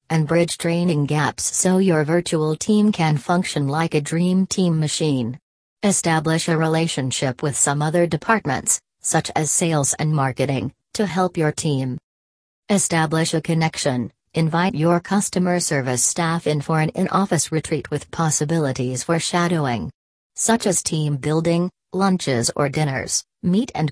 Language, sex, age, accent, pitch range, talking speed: English, female, 40-59, American, 145-175 Hz, 145 wpm